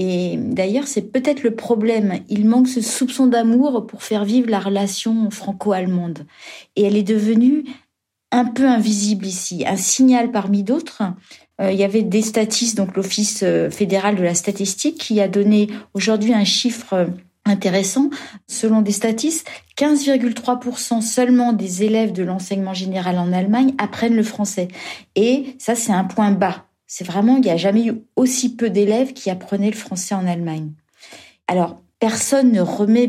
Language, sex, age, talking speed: French, female, 40-59, 160 wpm